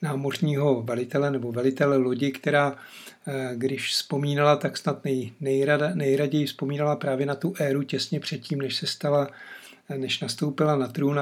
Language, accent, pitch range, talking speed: Czech, native, 135-150 Hz, 135 wpm